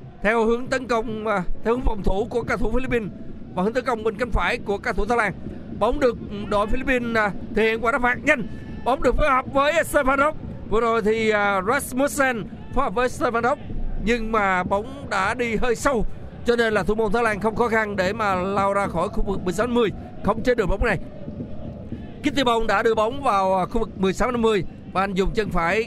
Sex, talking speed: male, 210 wpm